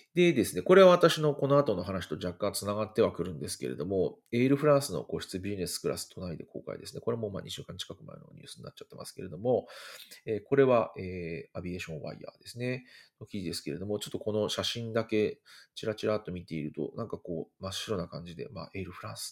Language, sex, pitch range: Japanese, male, 90-130 Hz